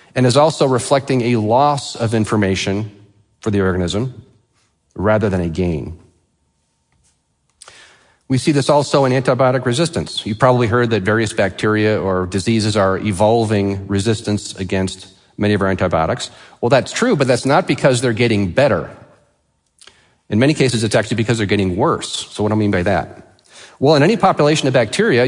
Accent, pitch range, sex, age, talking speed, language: American, 100-130 Hz, male, 40-59, 170 wpm, English